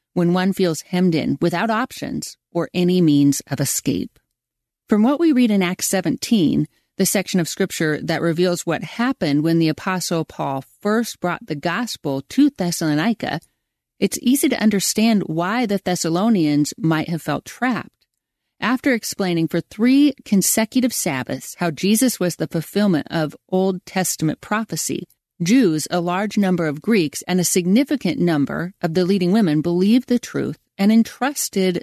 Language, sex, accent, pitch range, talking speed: English, female, American, 165-220 Hz, 155 wpm